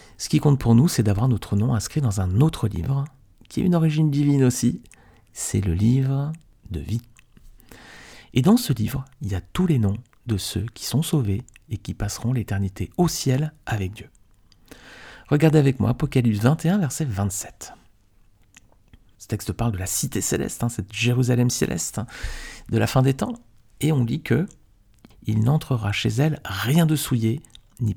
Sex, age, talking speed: male, 50-69, 180 wpm